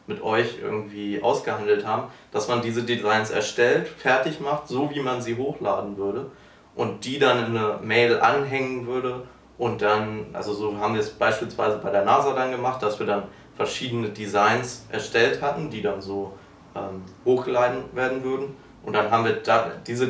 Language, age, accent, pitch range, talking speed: German, 20-39, German, 105-125 Hz, 175 wpm